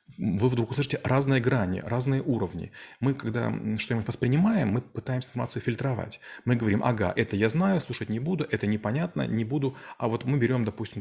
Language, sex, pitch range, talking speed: Russian, male, 105-130 Hz, 180 wpm